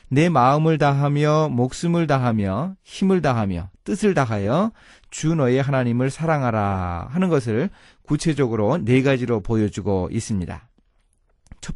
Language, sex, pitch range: Korean, male, 110-170 Hz